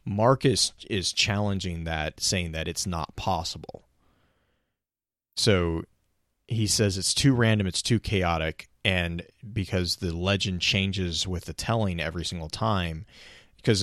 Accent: American